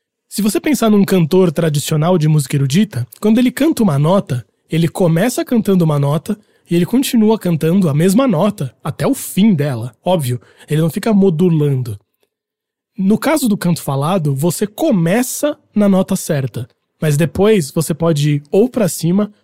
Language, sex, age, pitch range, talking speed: Portuguese, male, 20-39, 150-205 Hz, 165 wpm